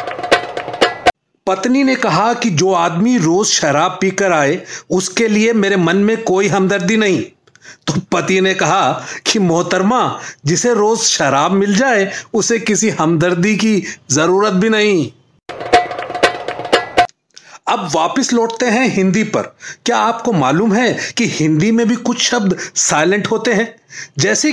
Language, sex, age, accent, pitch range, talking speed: Hindi, male, 40-59, native, 185-235 Hz, 135 wpm